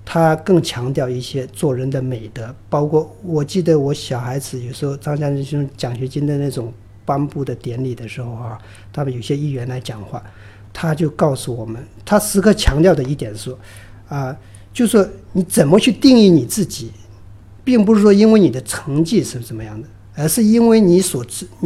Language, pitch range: Chinese, 120-170 Hz